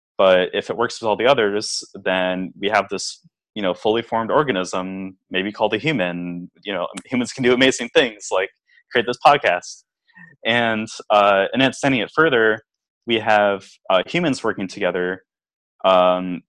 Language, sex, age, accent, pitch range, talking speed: English, male, 20-39, American, 95-120 Hz, 165 wpm